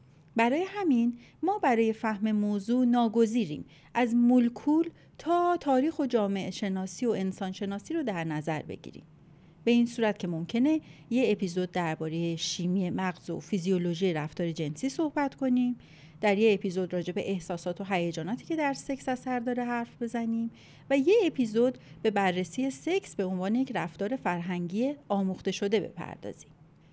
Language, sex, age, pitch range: Persian, female, 40-59, 180-250 Hz